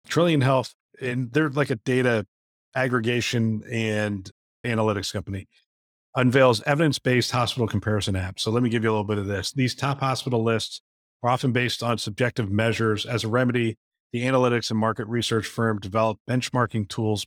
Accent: American